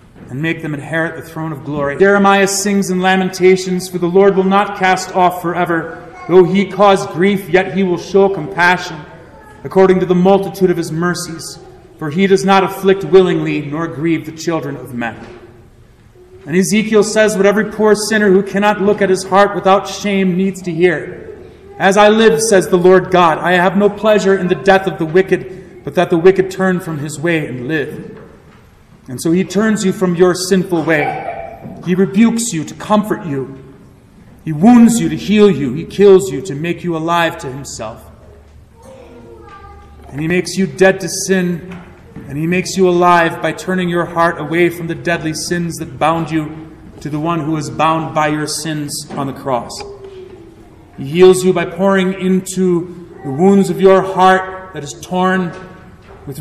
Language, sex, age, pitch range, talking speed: English, male, 30-49, 160-190 Hz, 185 wpm